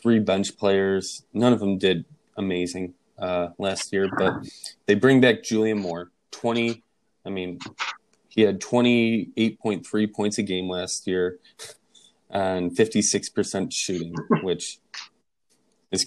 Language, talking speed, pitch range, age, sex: English, 125 wpm, 90-110 Hz, 20-39, male